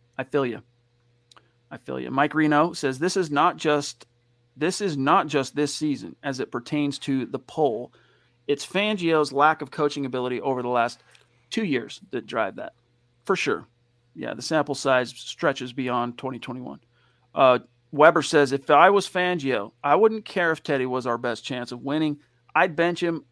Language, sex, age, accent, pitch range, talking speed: English, male, 40-59, American, 120-150 Hz, 180 wpm